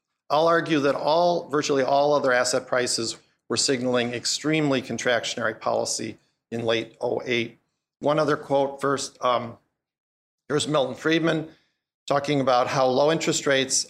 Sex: male